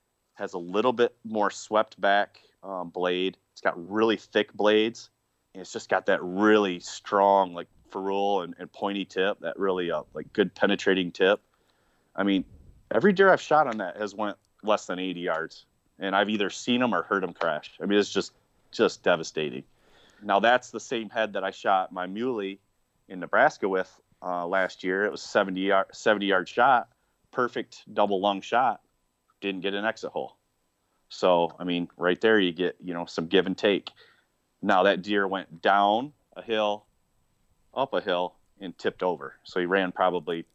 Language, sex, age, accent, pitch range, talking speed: English, male, 30-49, American, 90-105 Hz, 185 wpm